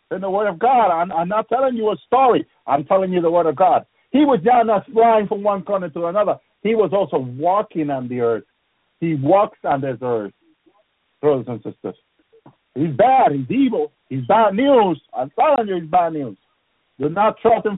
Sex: male